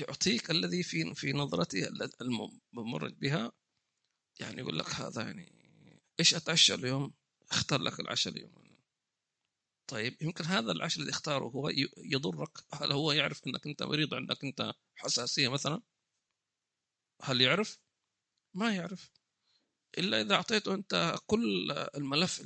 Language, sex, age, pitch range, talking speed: English, male, 40-59, 145-210 Hz, 130 wpm